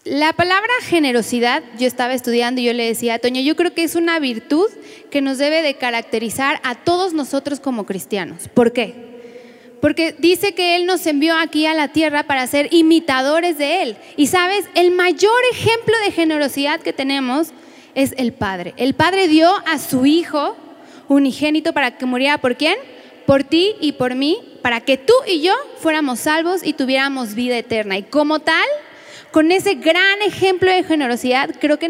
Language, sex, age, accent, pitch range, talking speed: Spanish, female, 20-39, Mexican, 260-345 Hz, 180 wpm